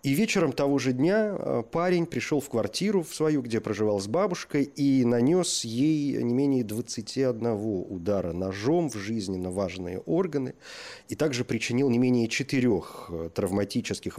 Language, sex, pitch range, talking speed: Russian, male, 95-135 Hz, 140 wpm